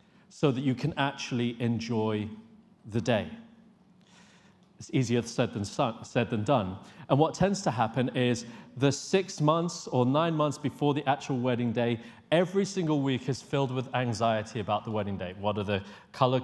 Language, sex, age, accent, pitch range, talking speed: English, male, 40-59, British, 115-175 Hz, 165 wpm